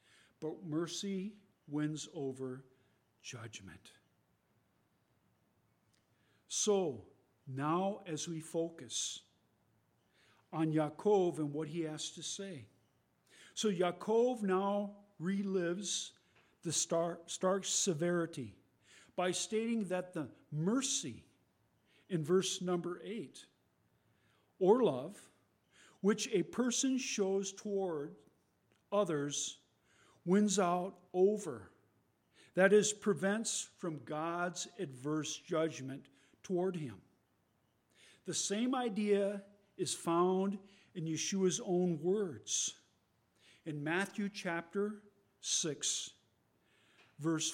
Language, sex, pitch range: English, male, 150-195 Hz